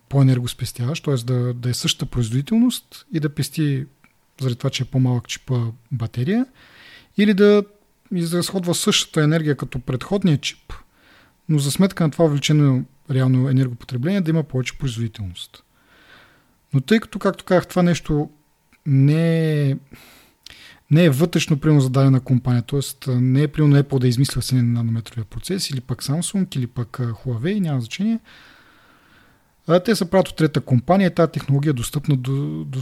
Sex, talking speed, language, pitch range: male, 150 wpm, Bulgarian, 130-160 Hz